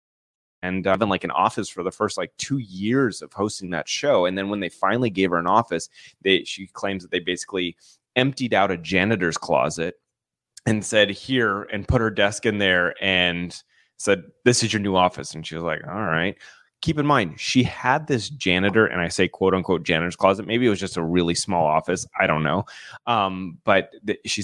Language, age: English, 30-49